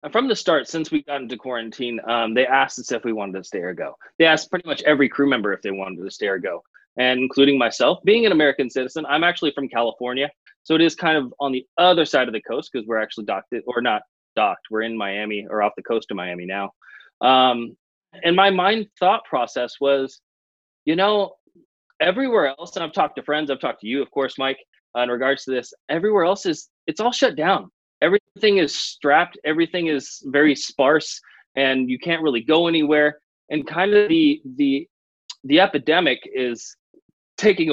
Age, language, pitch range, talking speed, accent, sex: 20-39, English, 125-170 Hz, 210 wpm, American, male